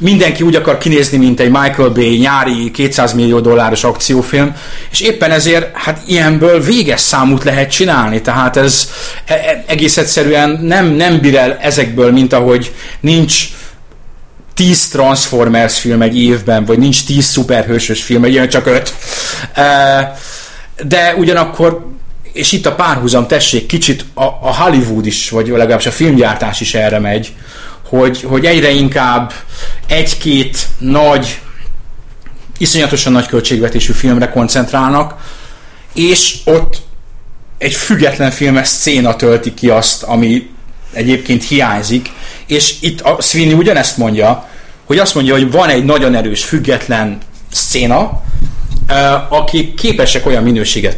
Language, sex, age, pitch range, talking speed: Hungarian, male, 30-49, 120-155 Hz, 130 wpm